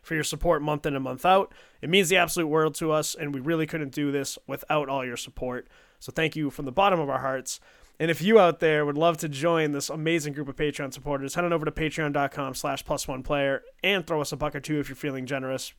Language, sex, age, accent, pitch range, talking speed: English, male, 20-39, American, 140-170 Hz, 260 wpm